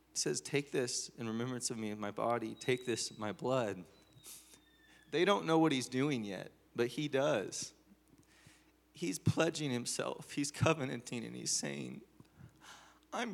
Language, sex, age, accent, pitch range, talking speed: English, male, 30-49, American, 110-145 Hz, 150 wpm